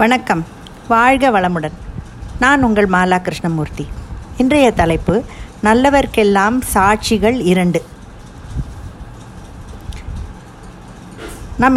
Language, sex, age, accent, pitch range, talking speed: Tamil, female, 50-69, native, 180-235 Hz, 65 wpm